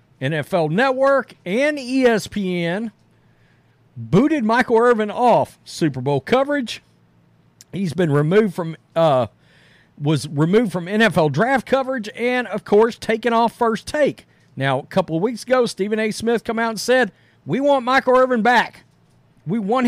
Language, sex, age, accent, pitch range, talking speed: English, male, 40-59, American, 165-250 Hz, 150 wpm